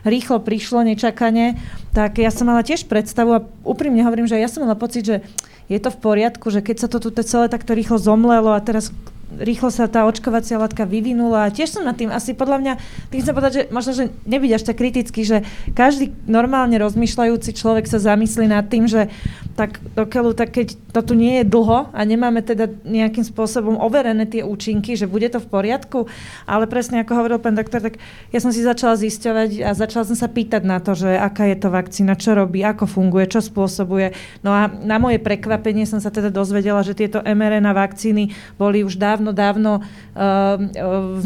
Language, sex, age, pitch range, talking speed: Slovak, female, 30-49, 205-235 Hz, 200 wpm